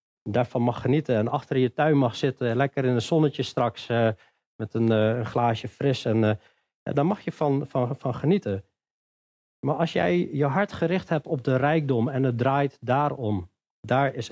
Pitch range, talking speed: 120-175 Hz, 170 wpm